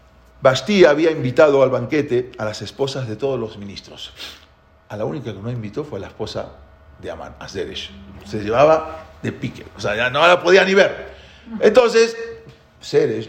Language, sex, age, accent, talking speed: English, male, 40-59, Spanish, 180 wpm